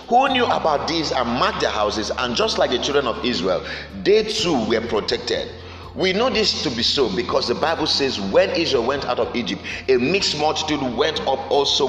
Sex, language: male, English